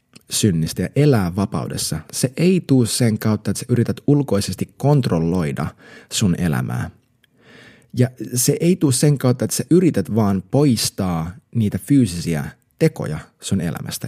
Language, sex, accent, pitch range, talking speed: Finnish, male, native, 105-135 Hz, 135 wpm